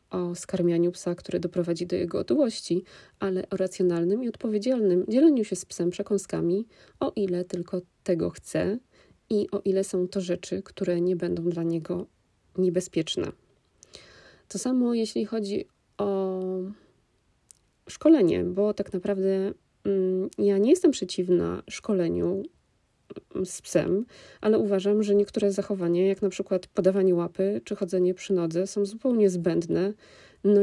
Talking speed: 135 wpm